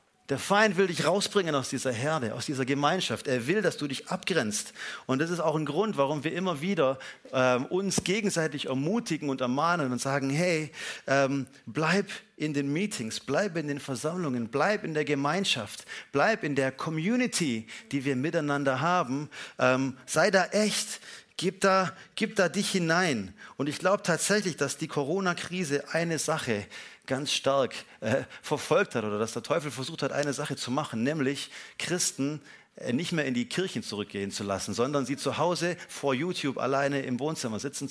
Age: 40-59